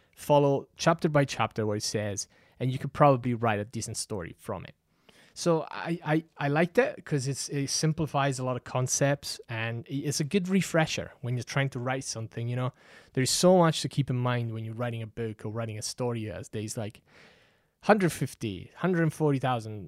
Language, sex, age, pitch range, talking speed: English, male, 20-39, 115-145 Hz, 195 wpm